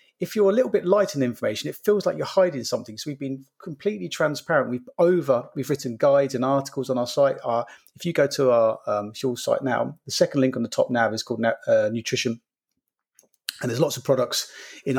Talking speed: 225 wpm